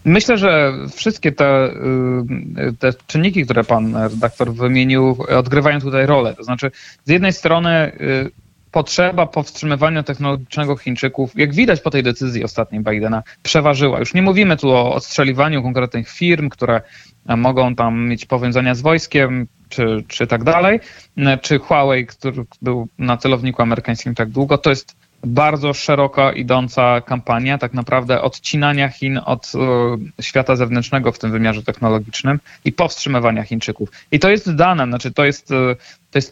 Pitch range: 125-150 Hz